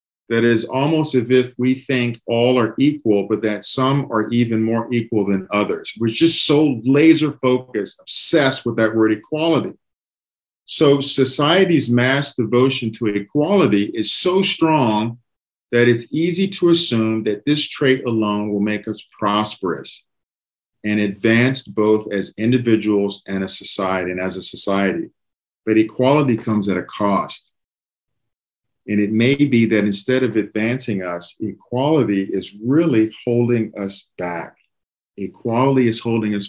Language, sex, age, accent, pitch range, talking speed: English, male, 50-69, American, 105-135 Hz, 140 wpm